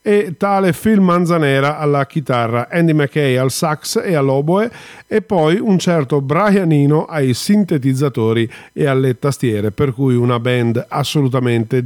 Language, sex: Italian, male